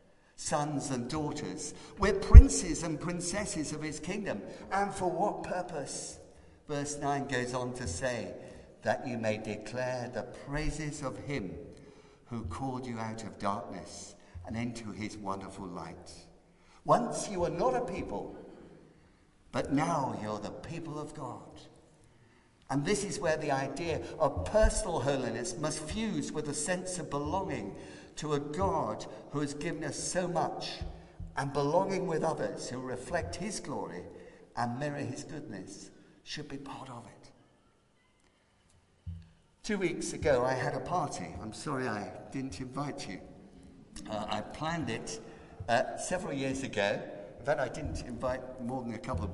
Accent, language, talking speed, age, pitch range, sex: British, English, 150 wpm, 60-79, 105-150 Hz, male